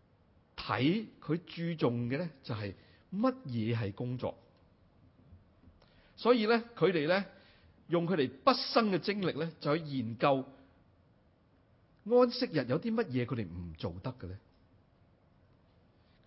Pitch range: 100-160 Hz